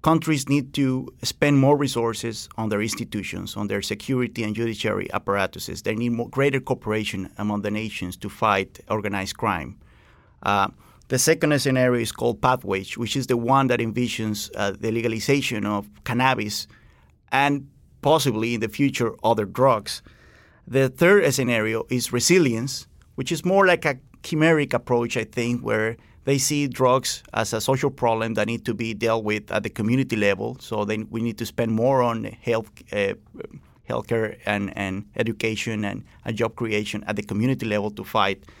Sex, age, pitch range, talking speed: male, 30-49, 110-135 Hz, 170 wpm